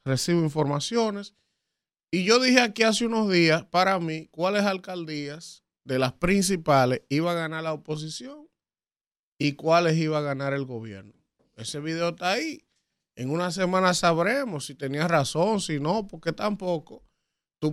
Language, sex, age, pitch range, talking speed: Spanish, male, 30-49, 145-185 Hz, 150 wpm